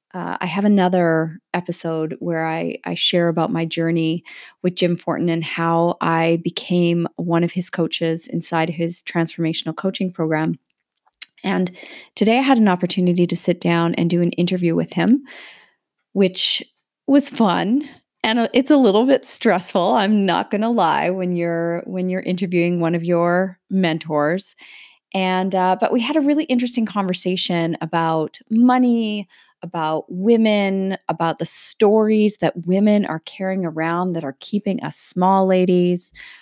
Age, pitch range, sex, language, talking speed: 30-49, 165-205 Hz, female, English, 155 wpm